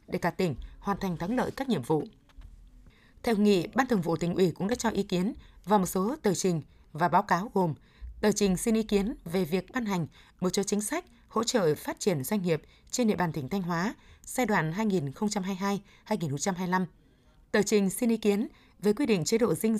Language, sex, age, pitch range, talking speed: Vietnamese, female, 20-39, 175-220 Hz, 215 wpm